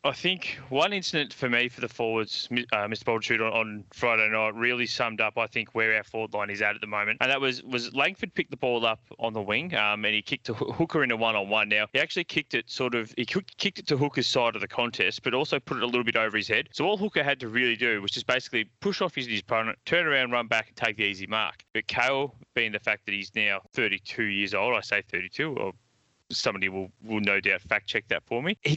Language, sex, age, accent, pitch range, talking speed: English, male, 20-39, Australian, 105-130 Hz, 265 wpm